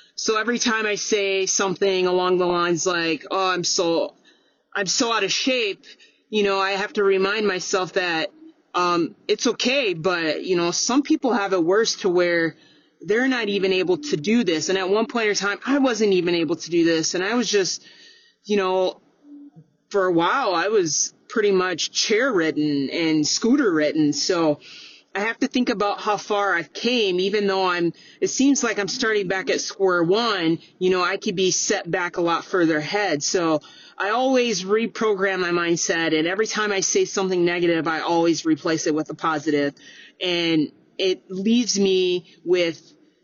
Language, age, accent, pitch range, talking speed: English, 30-49, American, 170-215 Hz, 185 wpm